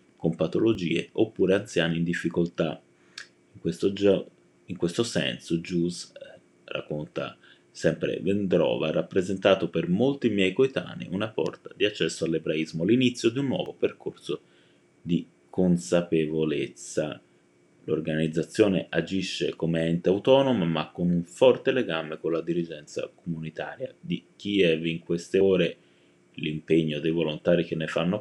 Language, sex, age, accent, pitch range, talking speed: Italian, male, 30-49, native, 80-100 Hz, 120 wpm